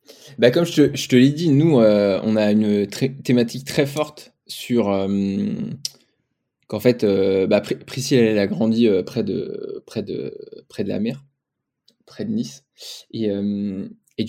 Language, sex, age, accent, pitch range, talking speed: French, male, 20-39, French, 105-130 Hz, 150 wpm